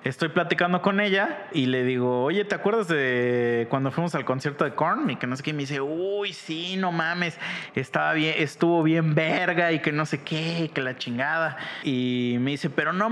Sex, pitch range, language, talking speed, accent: male, 135-195 Hz, Spanish, 210 wpm, Mexican